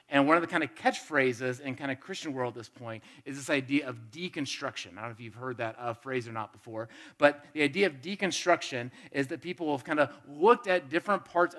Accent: American